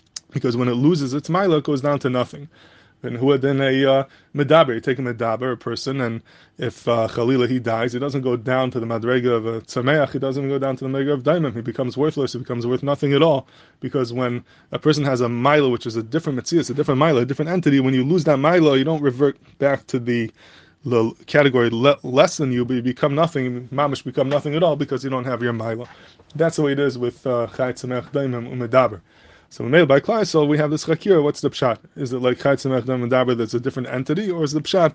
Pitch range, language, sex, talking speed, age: 120-145 Hz, English, male, 250 wpm, 20-39